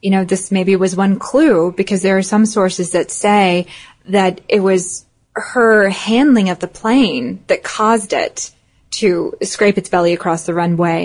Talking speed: 175 wpm